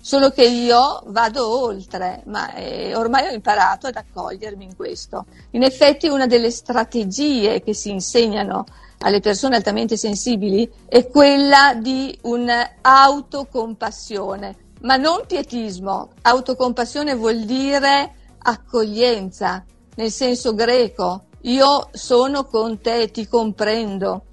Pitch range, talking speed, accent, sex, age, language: 210-260 Hz, 110 wpm, native, female, 50-69, Italian